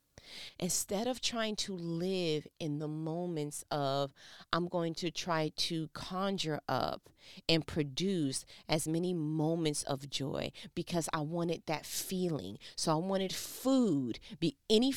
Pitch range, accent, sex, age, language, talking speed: 155-190 Hz, American, female, 30-49, English, 135 wpm